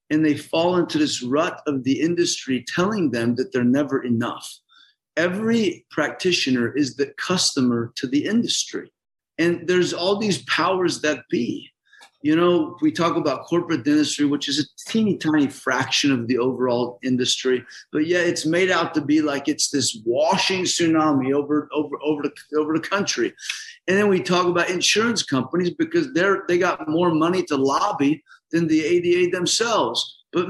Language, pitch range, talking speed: English, 145-195 Hz, 170 wpm